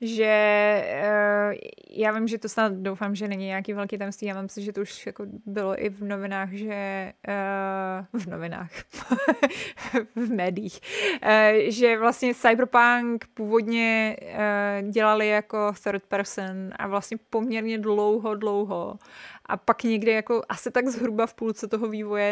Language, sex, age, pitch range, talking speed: Czech, female, 20-39, 210-240 Hz, 150 wpm